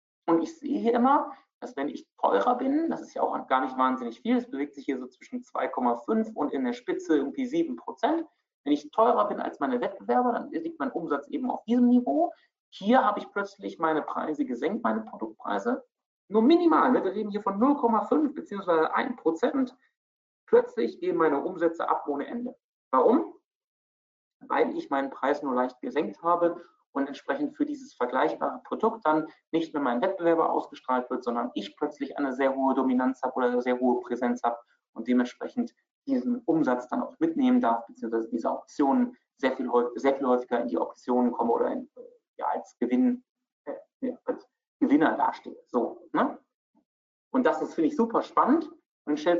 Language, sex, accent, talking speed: German, male, German, 180 wpm